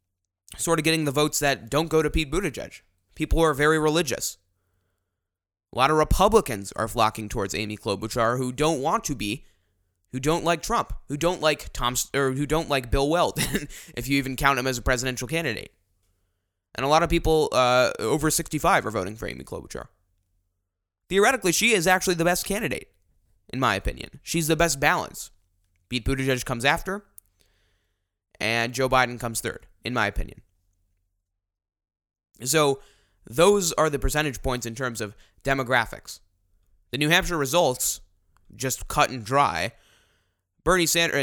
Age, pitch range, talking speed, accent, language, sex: 20-39, 95-150 Hz, 165 wpm, American, English, male